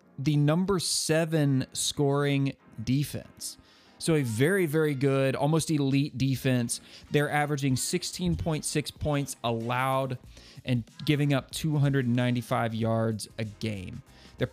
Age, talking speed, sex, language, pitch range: 20-39, 105 wpm, male, English, 125-150 Hz